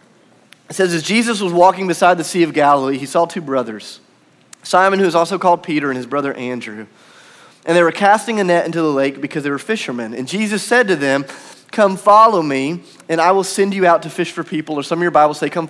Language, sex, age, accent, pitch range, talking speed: English, male, 30-49, American, 140-175 Hz, 240 wpm